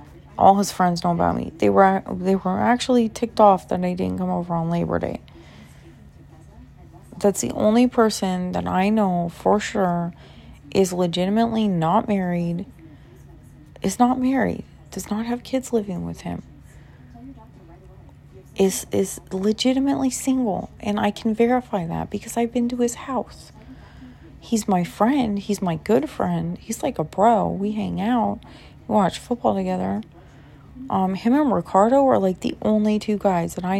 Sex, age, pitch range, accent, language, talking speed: female, 30-49, 180-235 Hz, American, English, 160 wpm